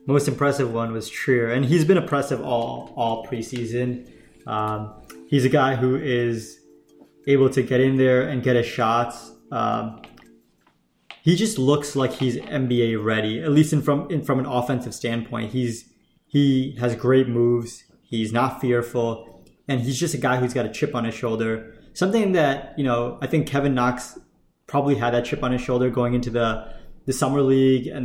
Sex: male